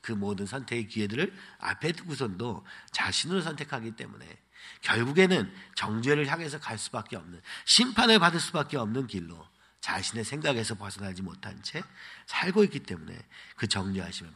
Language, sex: Korean, male